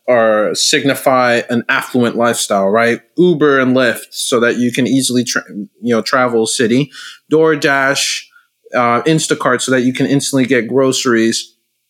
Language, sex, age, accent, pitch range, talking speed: English, male, 20-39, American, 120-155 Hz, 145 wpm